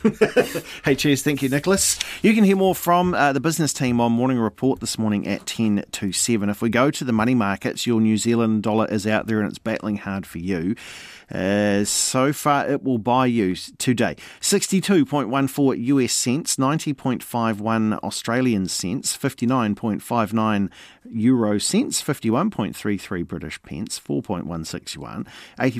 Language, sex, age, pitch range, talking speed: English, male, 40-59, 105-140 Hz, 150 wpm